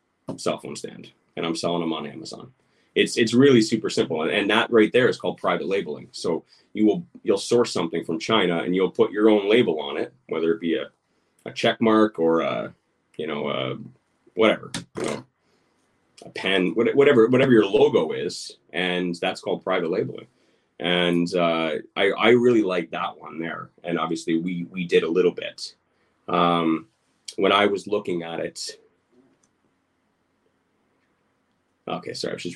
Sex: male